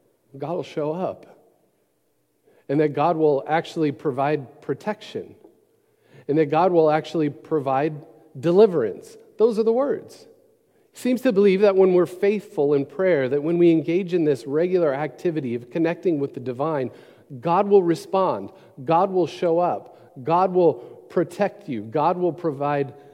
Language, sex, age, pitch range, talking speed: English, male, 50-69, 150-195 Hz, 150 wpm